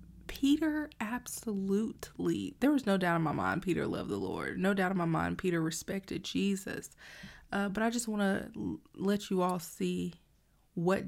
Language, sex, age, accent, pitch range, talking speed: English, female, 20-39, American, 180-215 Hz, 180 wpm